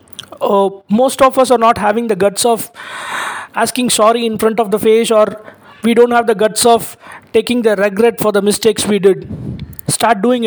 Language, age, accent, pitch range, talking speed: English, 20-39, Indian, 215-245 Hz, 195 wpm